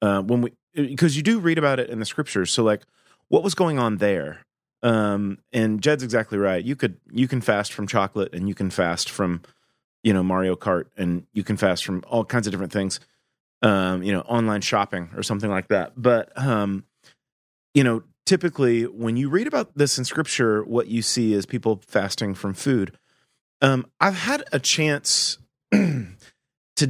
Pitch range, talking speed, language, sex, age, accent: 105-145 Hz, 190 wpm, English, male, 30-49, American